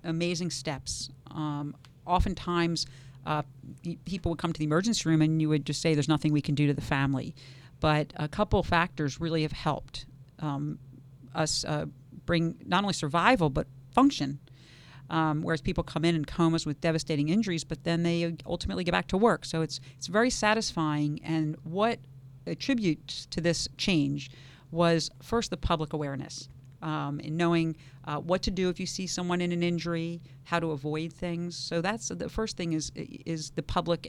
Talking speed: 180 wpm